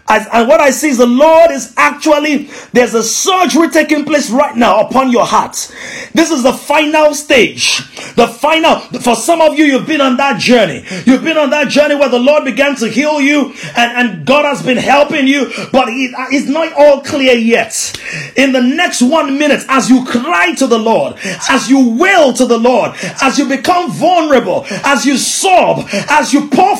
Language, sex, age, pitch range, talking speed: English, male, 30-49, 255-310 Hz, 200 wpm